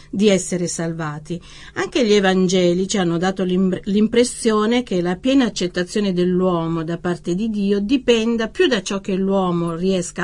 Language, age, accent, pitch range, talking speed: Italian, 40-59, native, 175-210 Hz, 150 wpm